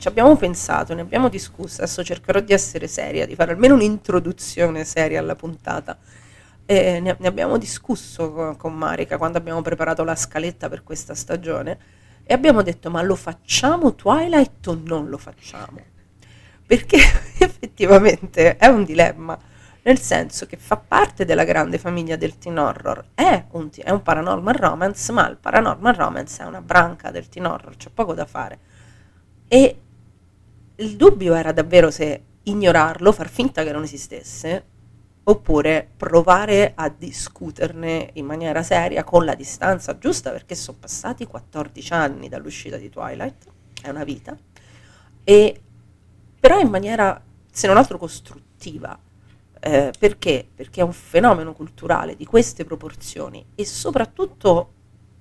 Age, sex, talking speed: 30-49, female, 145 wpm